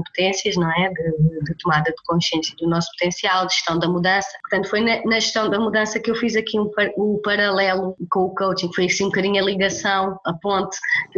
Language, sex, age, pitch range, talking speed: Portuguese, female, 20-39, 180-215 Hz, 225 wpm